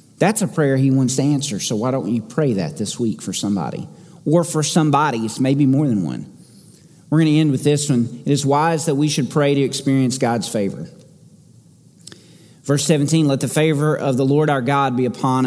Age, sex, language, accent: 40-59, male, English, American